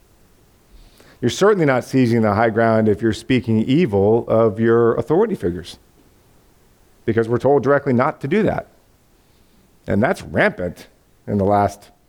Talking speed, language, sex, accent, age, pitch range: 145 wpm, English, male, American, 50-69, 110-155 Hz